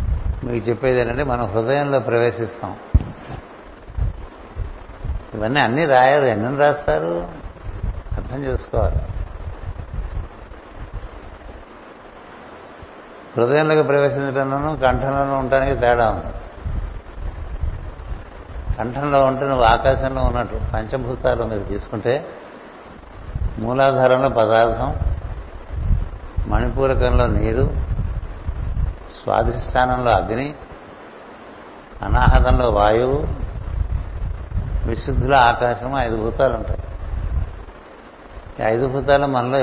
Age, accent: 60-79, native